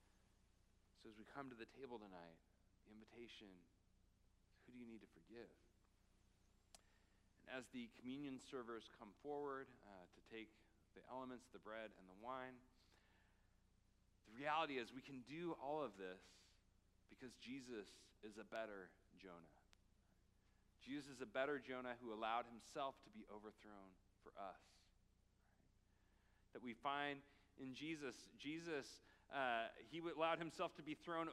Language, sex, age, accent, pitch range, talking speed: English, male, 40-59, American, 100-145 Hz, 145 wpm